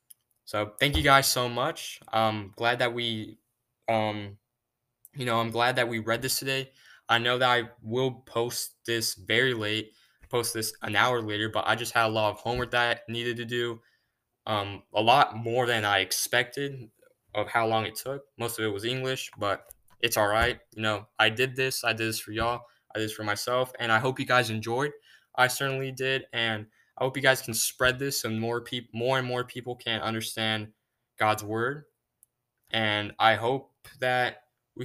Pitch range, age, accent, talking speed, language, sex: 110-125 Hz, 10-29, American, 200 wpm, English, male